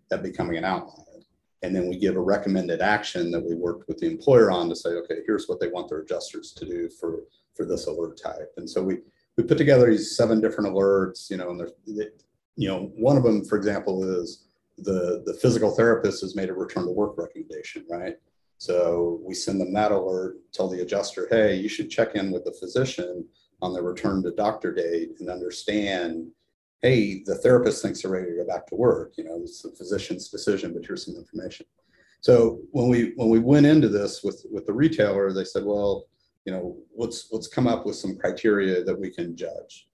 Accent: American